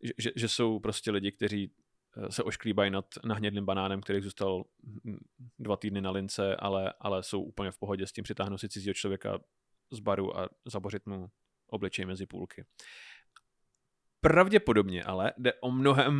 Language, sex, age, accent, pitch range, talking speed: Czech, male, 30-49, native, 100-135 Hz, 155 wpm